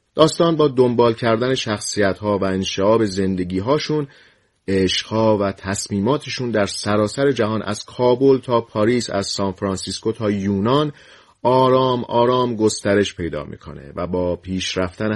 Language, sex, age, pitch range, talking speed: Persian, male, 30-49, 95-125 Hz, 120 wpm